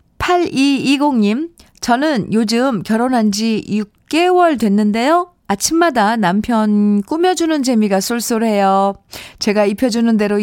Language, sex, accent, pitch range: Korean, female, native, 195-285 Hz